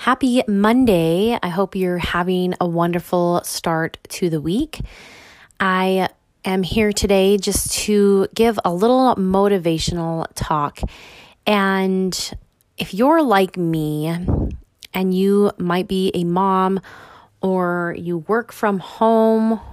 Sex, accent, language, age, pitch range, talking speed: female, American, English, 20-39, 170-200 Hz, 120 wpm